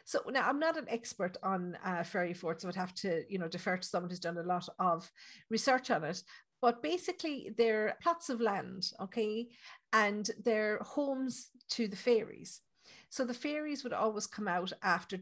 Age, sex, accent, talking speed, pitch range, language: 50-69, female, Irish, 195 wpm, 180-230 Hz, English